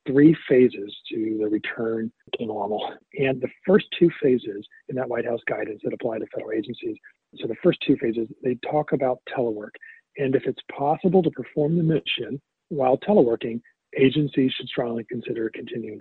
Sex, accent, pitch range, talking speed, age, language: male, American, 120-145 Hz, 170 wpm, 40-59, English